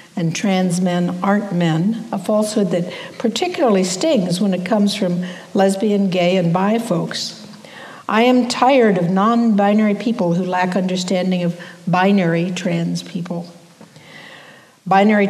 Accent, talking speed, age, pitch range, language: American, 130 wpm, 60-79, 180-220 Hz, English